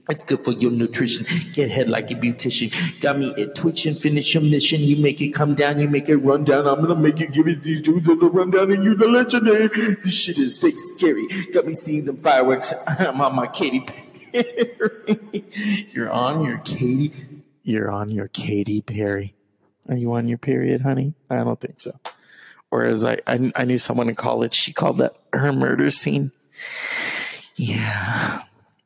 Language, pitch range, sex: English, 120-175 Hz, male